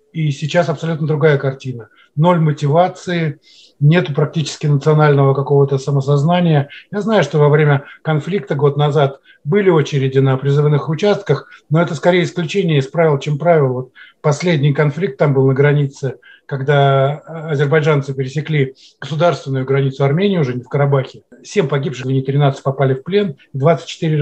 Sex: male